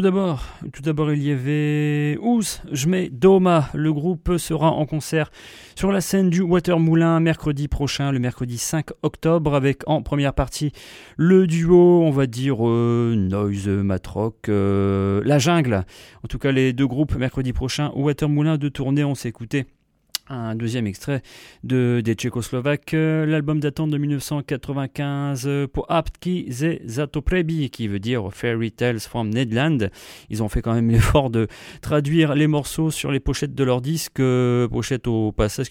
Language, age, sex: English, 30-49, male